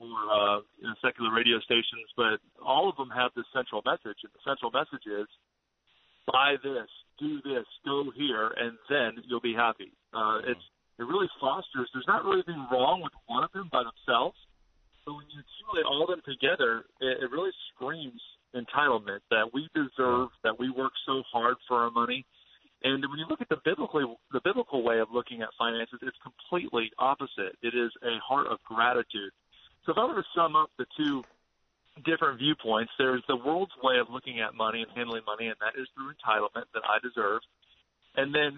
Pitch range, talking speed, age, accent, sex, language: 120-145 Hz, 200 wpm, 40-59, American, male, English